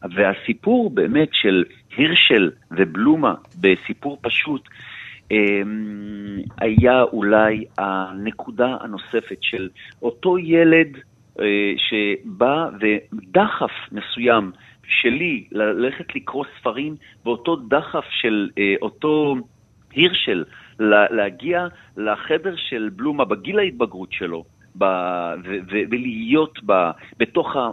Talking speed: 75 wpm